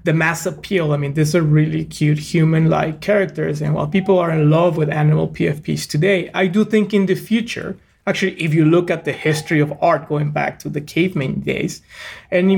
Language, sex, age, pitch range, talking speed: English, male, 30-49, 150-185 Hz, 205 wpm